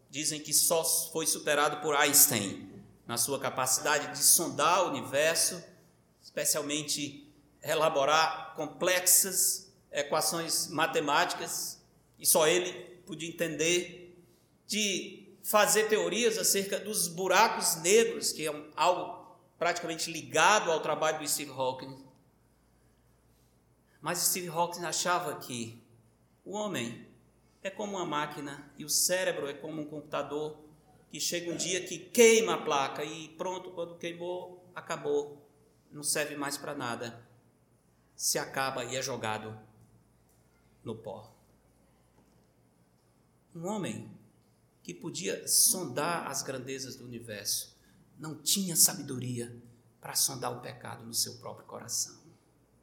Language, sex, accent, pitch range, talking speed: Portuguese, male, Brazilian, 130-175 Hz, 120 wpm